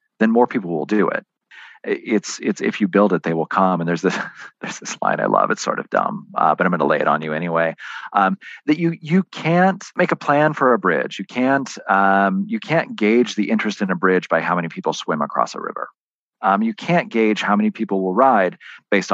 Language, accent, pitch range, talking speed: English, American, 95-140 Hz, 240 wpm